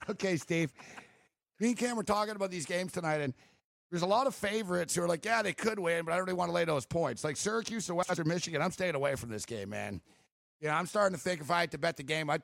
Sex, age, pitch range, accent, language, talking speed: male, 50-69, 150-180 Hz, American, English, 285 wpm